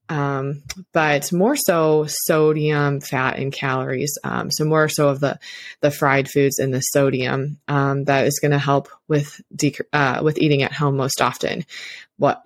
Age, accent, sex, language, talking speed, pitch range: 20-39, American, female, English, 175 wpm, 140-175 Hz